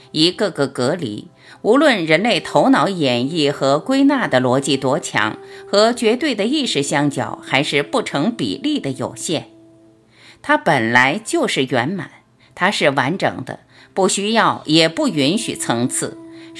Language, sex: Chinese, female